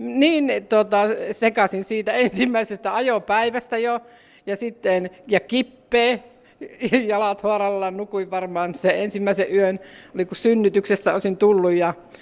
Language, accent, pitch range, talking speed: Finnish, native, 190-240 Hz, 120 wpm